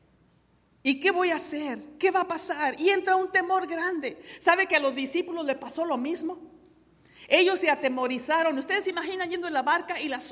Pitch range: 285-365 Hz